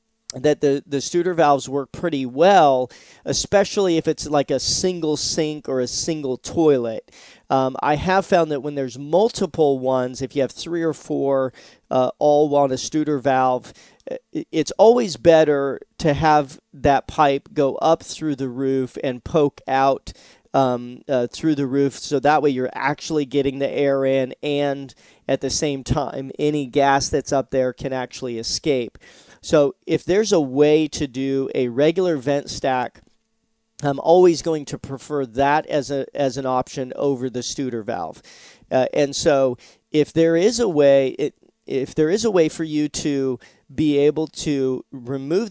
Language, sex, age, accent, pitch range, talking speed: English, male, 40-59, American, 135-155 Hz, 170 wpm